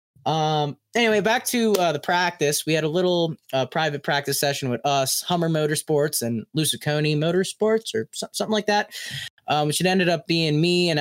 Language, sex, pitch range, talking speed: English, male, 130-185 Hz, 185 wpm